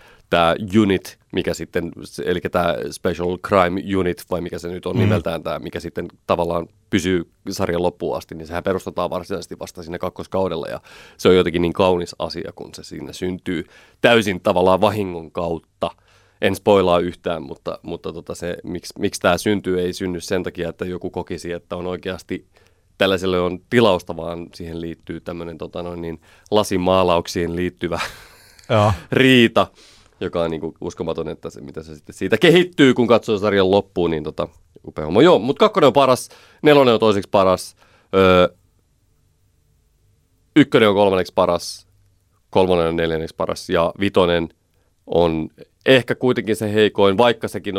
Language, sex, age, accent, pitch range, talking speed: Finnish, male, 30-49, native, 85-100 Hz, 150 wpm